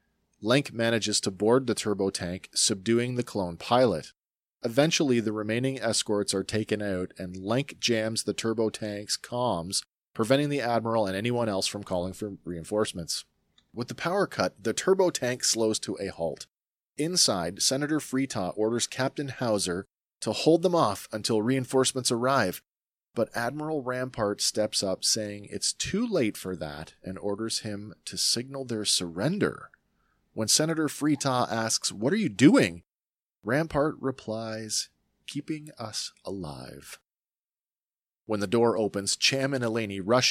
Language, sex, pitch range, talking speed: English, male, 100-130 Hz, 145 wpm